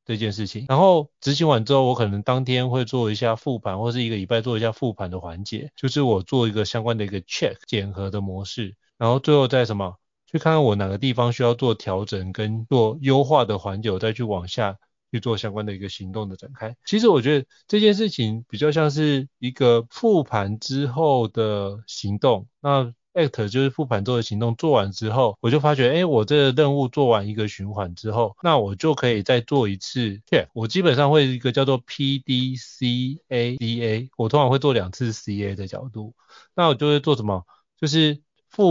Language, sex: Chinese, male